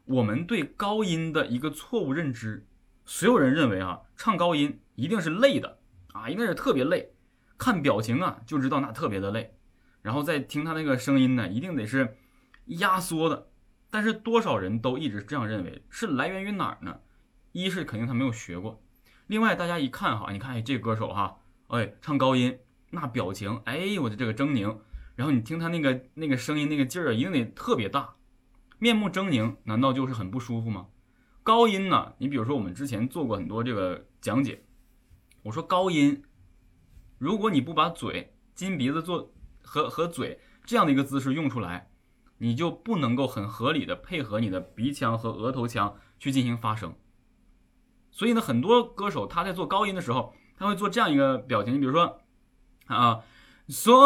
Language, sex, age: Chinese, male, 20-39